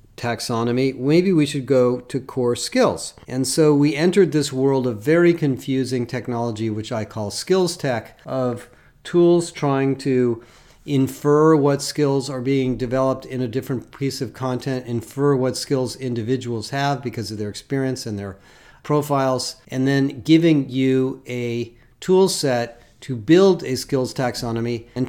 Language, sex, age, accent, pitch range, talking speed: English, male, 40-59, American, 120-140 Hz, 155 wpm